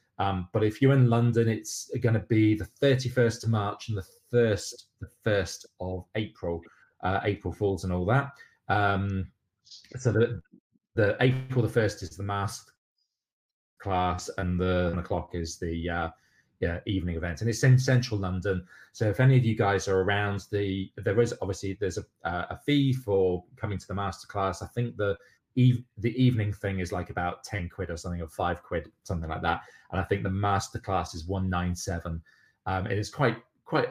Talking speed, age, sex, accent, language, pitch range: 190 wpm, 30-49, male, British, English, 90-115 Hz